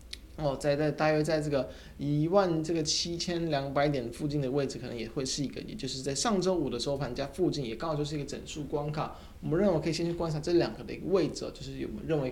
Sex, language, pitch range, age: male, Chinese, 125-155 Hz, 20-39